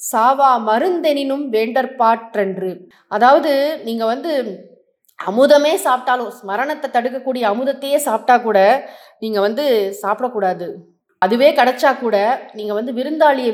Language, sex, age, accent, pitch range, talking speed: English, female, 20-39, Indian, 210-265 Hz, 105 wpm